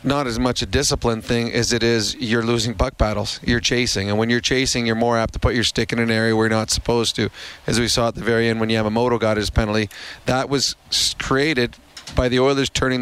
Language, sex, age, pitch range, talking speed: English, male, 30-49, 115-135 Hz, 260 wpm